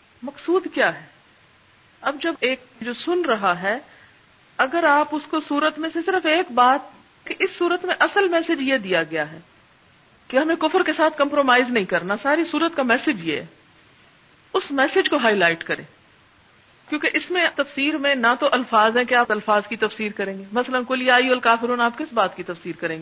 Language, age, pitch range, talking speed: Urdu, 40-59, 215-290 Hz, 195 wpm